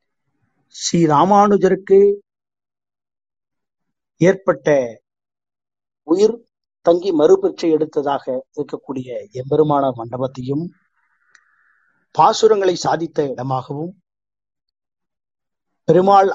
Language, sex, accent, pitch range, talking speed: English, male, Indian, 140-185 Hz, 50 wpm